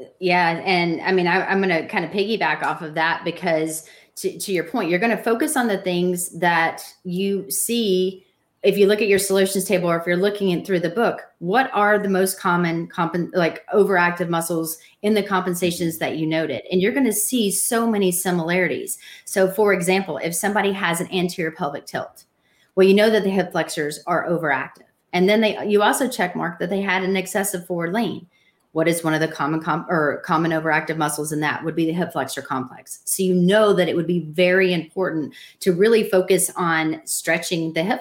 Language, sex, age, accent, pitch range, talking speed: English, female, 30-49, American, 165-195 Hz, 210 wpm